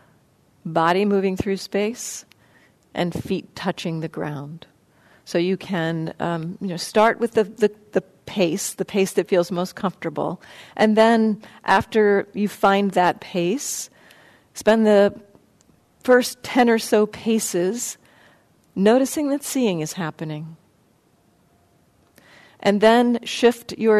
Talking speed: 125 wpm